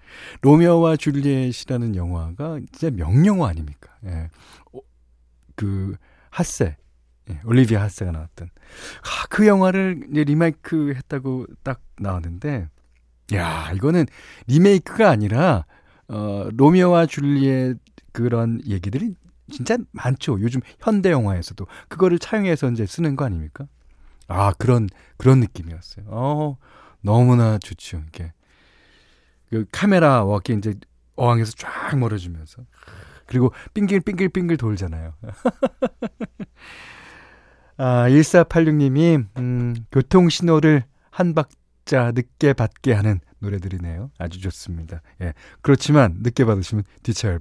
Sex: male